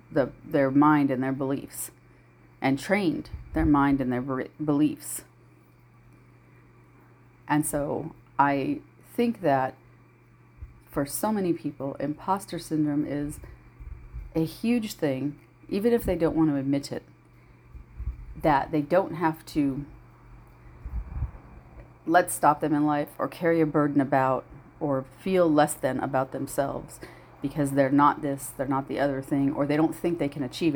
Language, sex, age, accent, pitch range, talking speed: English, female, 40-59, American, 135-165 Hz, 140 wpm